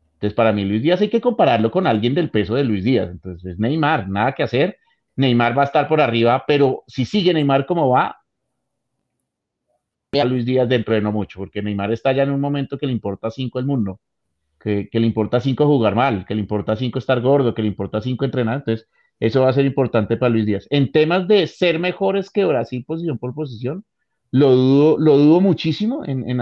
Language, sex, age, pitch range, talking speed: Spanish, male, 30-49, 115-155 Hz, 220 wpm